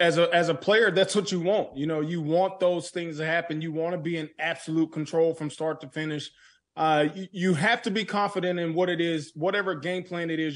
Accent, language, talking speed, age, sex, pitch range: American, English, 250 wpm, 20-39, male, 150-175 Hz